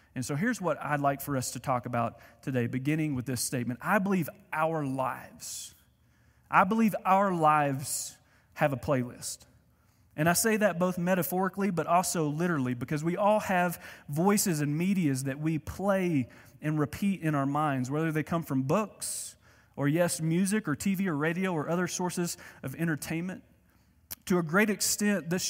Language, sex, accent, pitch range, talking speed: English, male, American, 130-175 Hz, 170 wpm